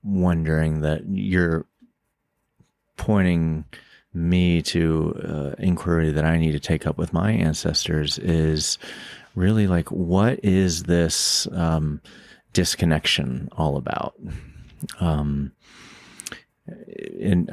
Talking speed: 100 wpm